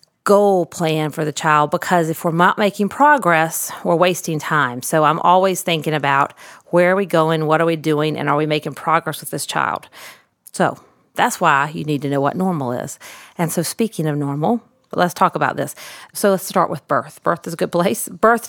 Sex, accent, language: female, American, English